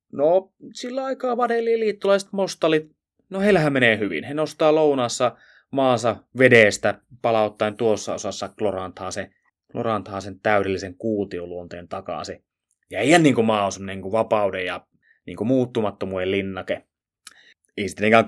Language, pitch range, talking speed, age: Finnish, 95-125 Hz, 120 wpm, 20-39